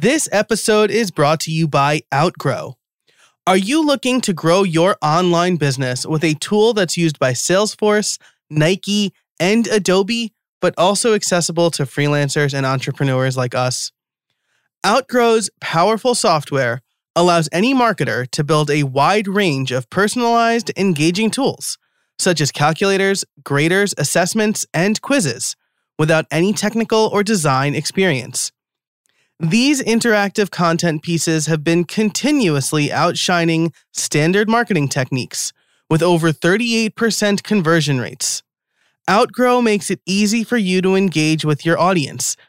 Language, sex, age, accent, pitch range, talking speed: English, male, 20-39, American, 155-210 Hz, 125 wpm